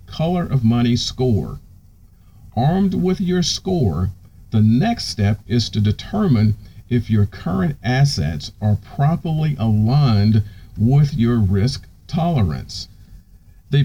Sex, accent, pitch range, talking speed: male, American, 100-135 Hz, 115 wpm